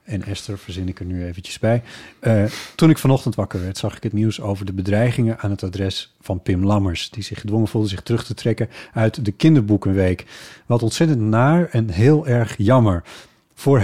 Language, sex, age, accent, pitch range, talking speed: Dutch, male, 40-59, Dutch, 100-130 Hz, 200 wpm